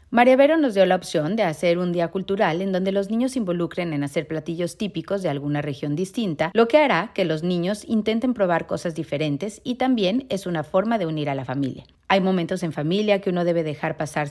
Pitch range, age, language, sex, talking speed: 160-210 Hz, 40-59, Spanish, female, 225 wpm